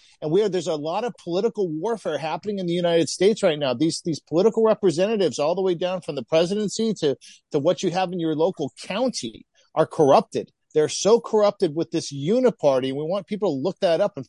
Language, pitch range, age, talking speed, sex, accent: English, 150-195 Hz, 50-69, 225 wpm, male, American